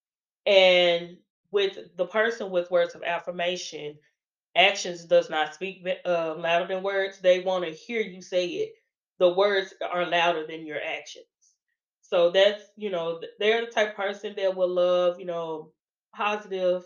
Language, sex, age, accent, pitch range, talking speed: English, female, 20-39, American, 175-210 Hz, 160 wpm